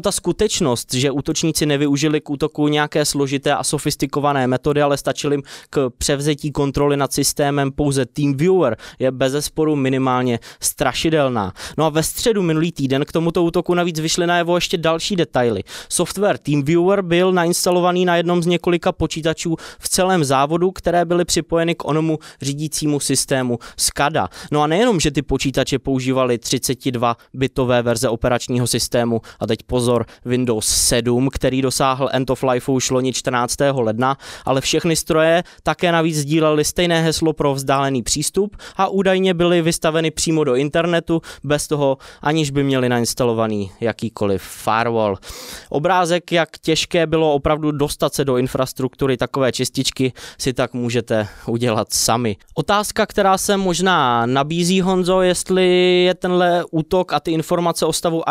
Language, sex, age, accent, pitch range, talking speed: Czech, male, 20-39, native, 130-170 Hz, 150 wpm